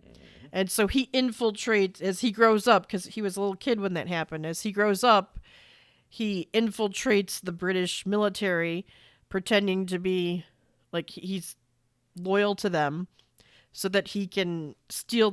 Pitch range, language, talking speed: 185-220 Hz, English, 155 wpm